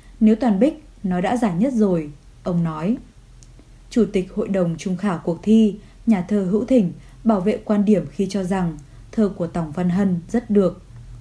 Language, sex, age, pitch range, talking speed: Vietnamese, female, 20-39, 170-220 Hz, 195 wpm